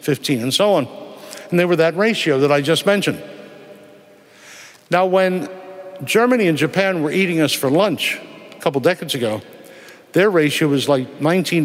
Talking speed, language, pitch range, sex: 165 wpm, English, 140-180 Hz, male